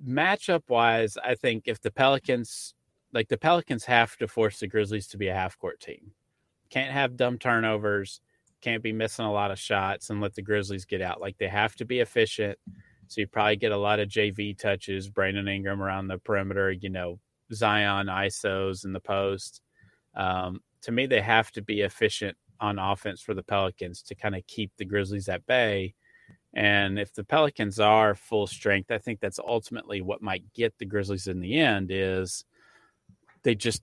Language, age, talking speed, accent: English, 30-49, 190 wpm, American